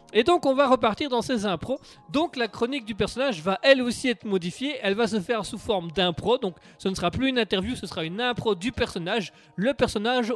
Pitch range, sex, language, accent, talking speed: 165-235 Hz, male, French, French, 230 wpm